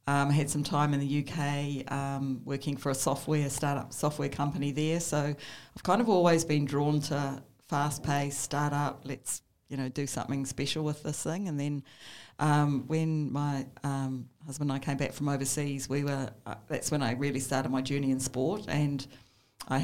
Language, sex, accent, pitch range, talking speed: English, female, Australian, 130-145 Hz, 195 wpm